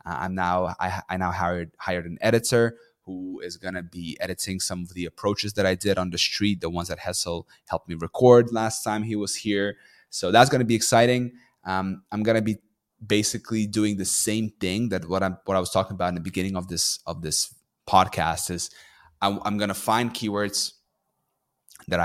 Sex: male